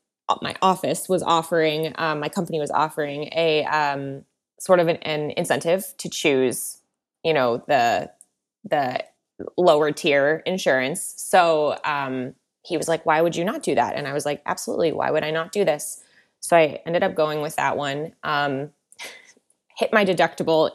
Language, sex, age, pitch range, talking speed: English, female, 20-39, 150-190 Hz, 170 wpm